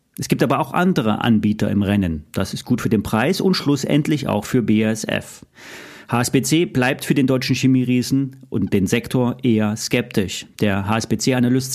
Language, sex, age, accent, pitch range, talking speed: German, male, 40-59, German, 115-140 Hz, 165 wpm